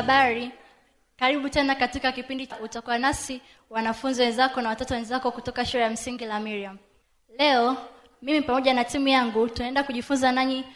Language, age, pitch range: Swahili, 20-39, 235-275 Hz